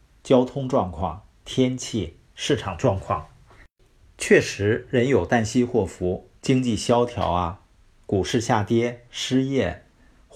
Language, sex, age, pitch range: Chinese, male, 50-69, 90-125 Hz